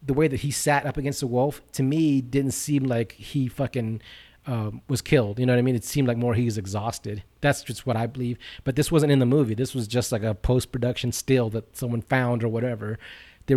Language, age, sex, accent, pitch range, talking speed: English, 30-49, male, American, 115-135 Hz, 245 wpm